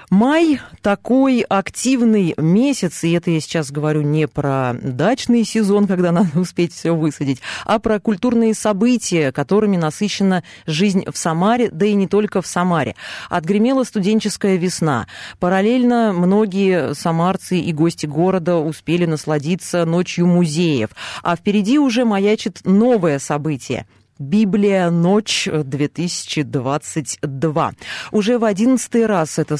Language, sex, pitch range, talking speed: Russian, female, 155-210 Hz, 120 wpm